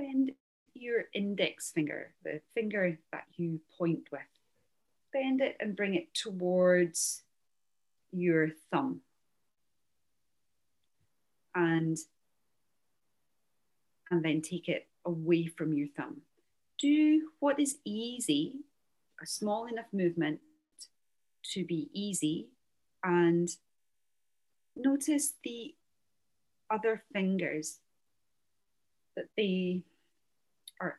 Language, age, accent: Japanese, 40-59, British